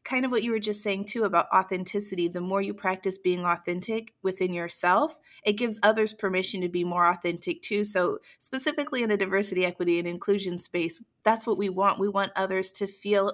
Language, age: English, 30-49